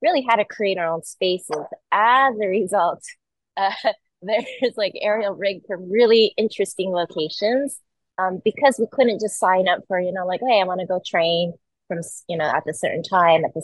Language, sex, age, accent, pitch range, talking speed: English, female, 20-39, American, 170-210 Hz, 200 wpm